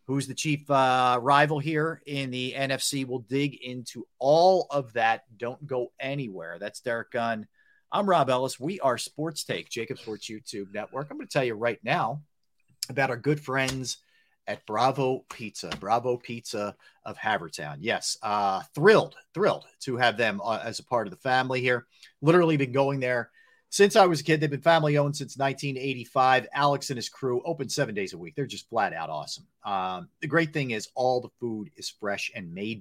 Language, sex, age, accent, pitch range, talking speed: English, male, 40-59, American, 120-150 Hz, 190 wpm